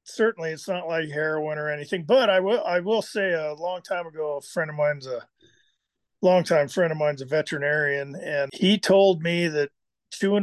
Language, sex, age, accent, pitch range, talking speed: English, male, 50-69, American, 150-180 Hz, 195 wpm